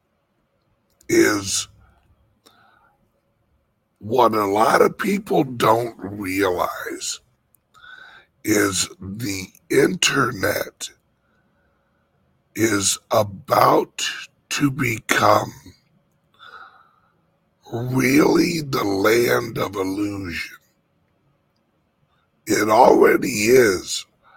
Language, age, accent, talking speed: English, 60-79, American, 55 wpm